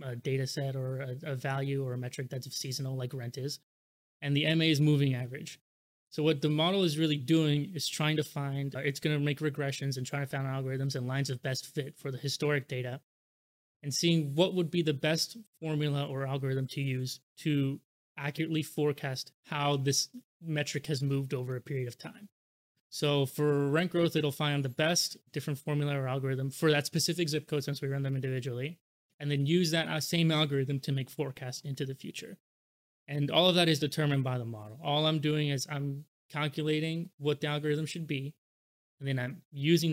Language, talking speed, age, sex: English, 205 wpm, 20-39, male